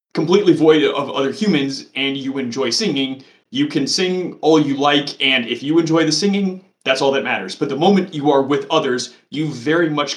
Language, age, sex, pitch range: English, 30-49, male, 125-165 Hz